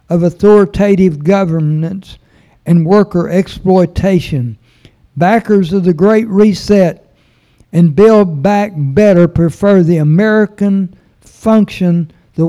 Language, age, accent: English, 60-79, American